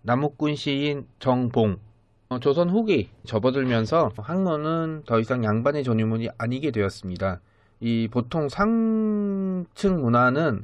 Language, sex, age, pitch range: Korean, male, 40-59, 110-155 Hz